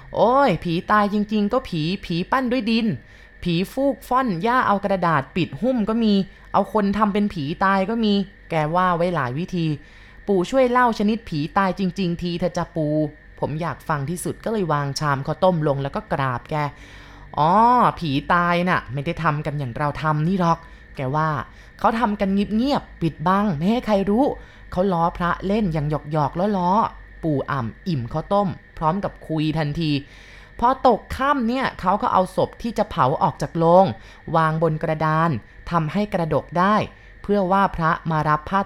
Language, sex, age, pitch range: Thai, female, 20-39, 155-205 Hz